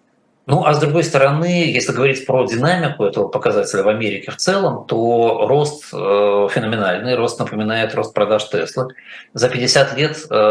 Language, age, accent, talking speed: Russian, 20-39, native, 150 wpm